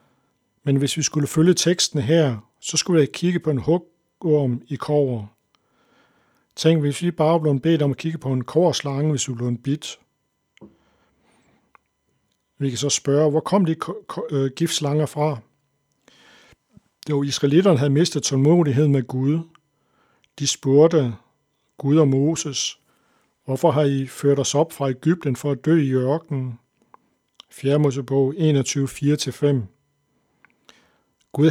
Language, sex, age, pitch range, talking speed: Danish, male, 60-79, 135-155 Hz, 135 wpm